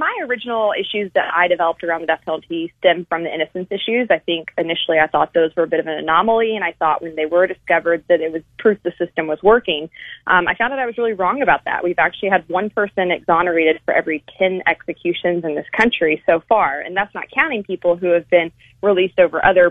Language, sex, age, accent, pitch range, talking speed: English, female, 20-39, American, 170-220 Hz, 240 wpm